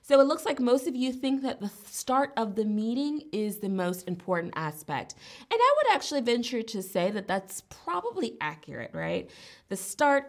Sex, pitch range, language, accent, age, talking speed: female, 170-220 Hz, English, American, 20-39, 190 wpm